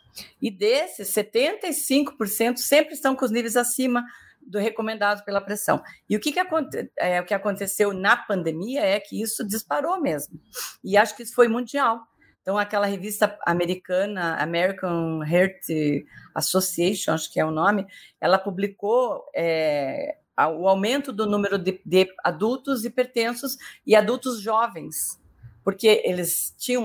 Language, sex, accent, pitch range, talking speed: Portuguese, female, Brazilian, 185-235 Hz, 130 wpm